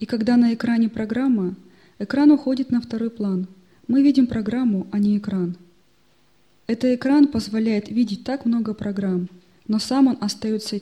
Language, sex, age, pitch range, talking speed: Russian, female, 20-39, 195-250 Hz, 150 wpm